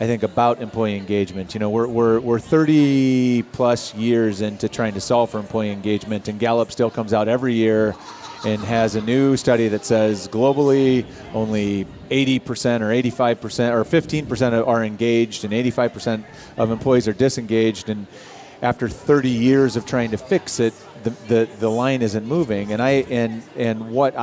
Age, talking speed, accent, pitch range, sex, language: 30-49, 170 wpm, American, 110-125 Hz, male, English